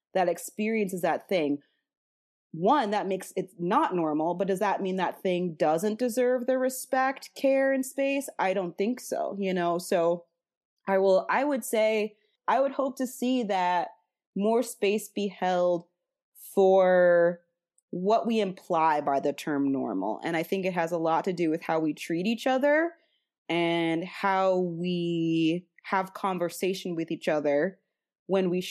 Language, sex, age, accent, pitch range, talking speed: English, female, 20-39, American, 165-225 Hz, 165 wpm